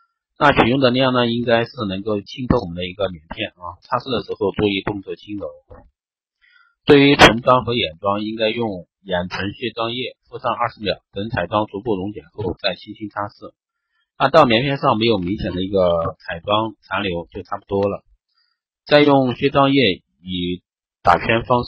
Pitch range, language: 95-120 Hz, Chinese